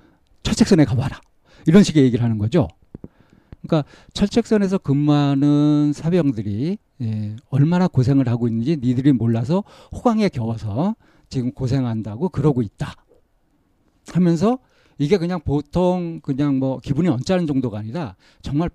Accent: native